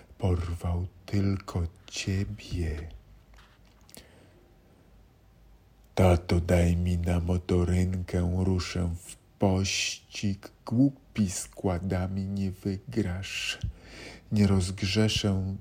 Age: 50-69